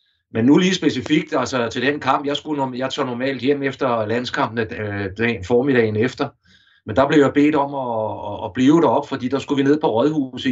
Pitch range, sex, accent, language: 110-140 Hz, male, native, Danish